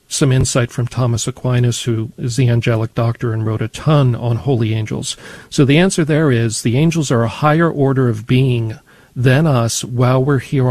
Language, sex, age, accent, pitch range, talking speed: English, male, 50-69, American, 120-135 Hz, 195 wpm